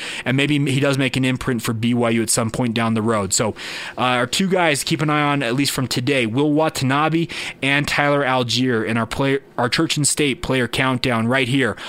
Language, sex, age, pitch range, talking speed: English, male, 30-49, 125-160 Hz, 220 wpm